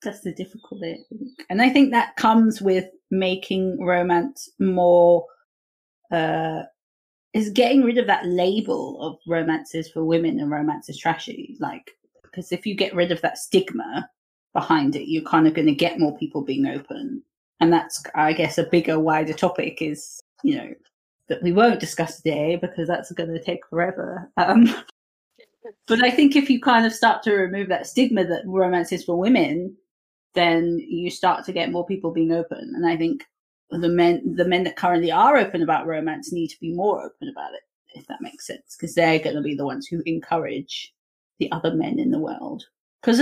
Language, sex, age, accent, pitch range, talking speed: English, female, 30-49, British, 165-235 Hz, 195 wpm